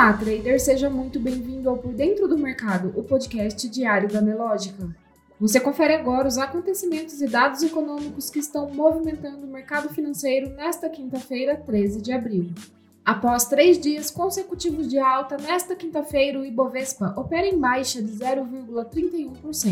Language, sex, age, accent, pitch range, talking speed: Portuguese, female, 20-39, Brazilian, 230-310 Hz, 145 wpm